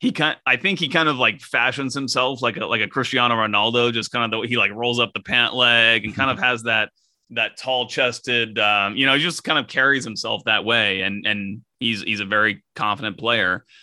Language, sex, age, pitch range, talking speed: Swedish, male, 30-49, 110-130 Hz, 240 wpm